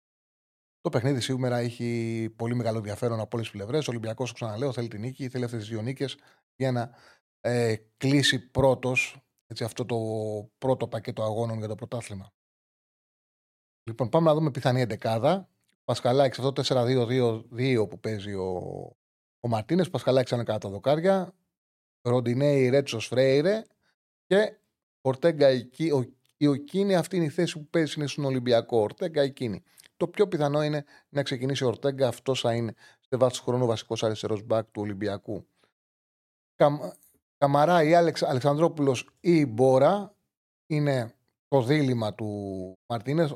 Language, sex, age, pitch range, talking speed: Greek, male, 30-49, 115-145 Hz, 145 wpm